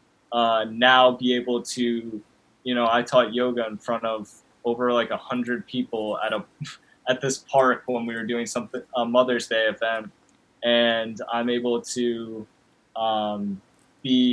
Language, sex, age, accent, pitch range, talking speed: English, male, 20-39, American, 110-125 Hz, 160 wpm